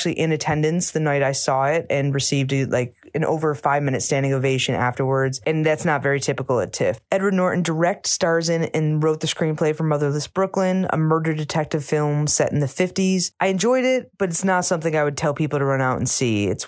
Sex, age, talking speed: female, 20-39, 225 wpm